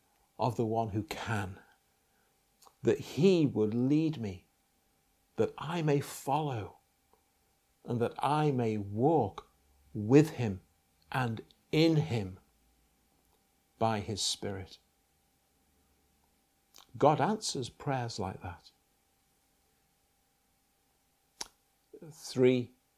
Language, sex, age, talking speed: English, male, 50-69, 85 wpm